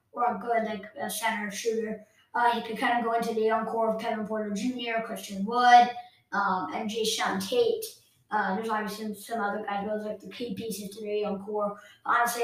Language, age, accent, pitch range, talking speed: English, 20-39, American, 220-260 Hz, 220 wpm